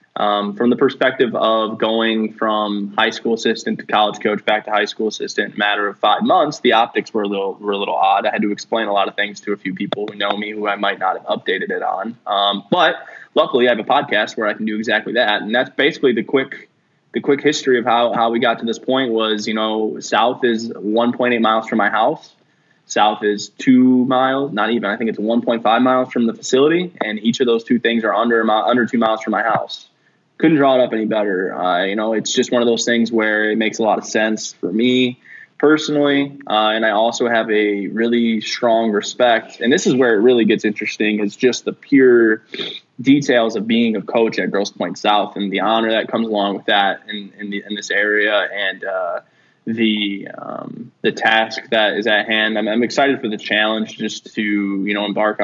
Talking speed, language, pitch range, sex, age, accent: 230 wpm, English, 105-120 Hz, male, 20-39, American